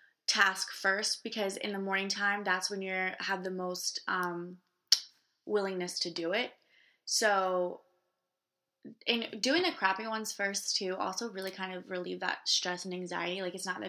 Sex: female